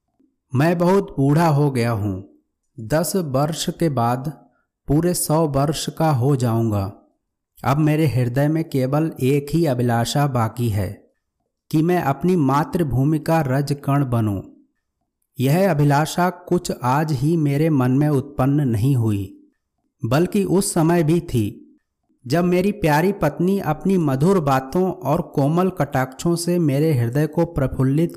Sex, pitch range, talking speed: male, 130-170 Hz, 135 wpm